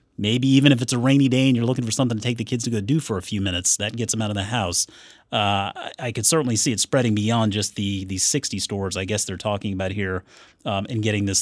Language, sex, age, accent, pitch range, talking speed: English, male, 30-49, American, 105-145 Hz, 280 wpm